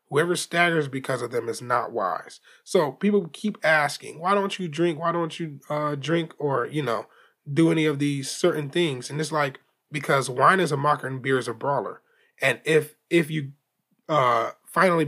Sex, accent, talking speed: male, American, 195 wpm